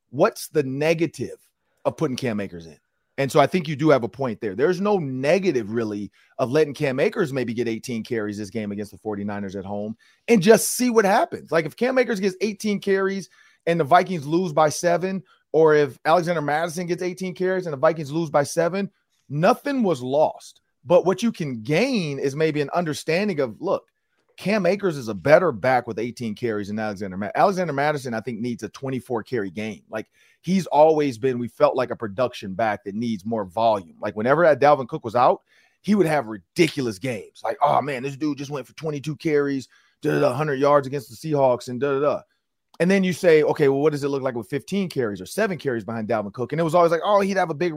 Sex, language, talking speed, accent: male, English, 220 wpm, American